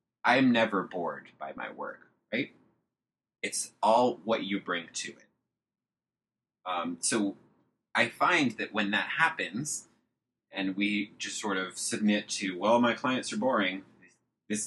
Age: 20-39